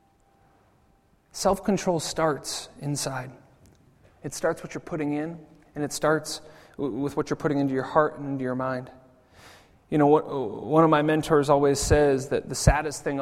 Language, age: English, 30-49